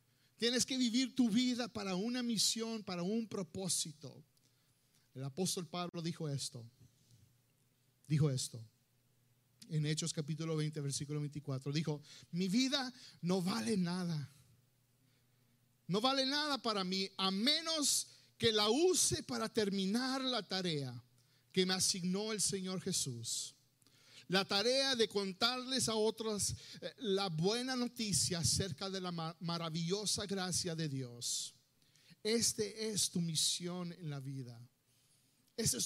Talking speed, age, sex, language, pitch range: 125 wpm, 50-69, male, Spanish, 140-220 Hz